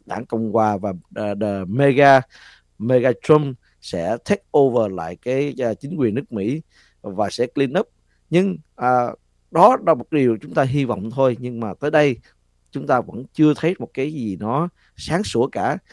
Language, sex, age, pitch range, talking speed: Vietnamese, male, 20-39, 110-140 Hz, 185 wpm